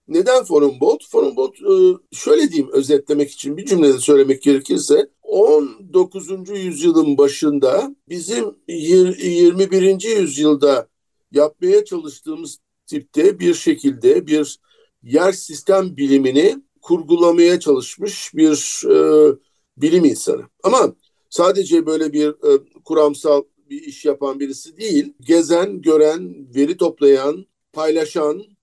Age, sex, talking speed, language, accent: 60-79, male, 100 wpm, Turkish, native